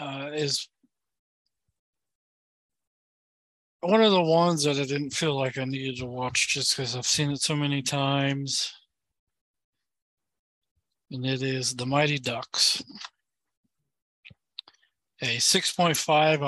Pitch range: 145-180 Hz